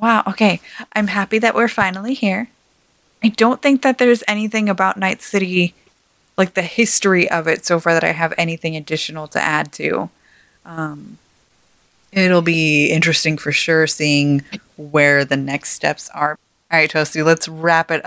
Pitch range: 165-215 Hz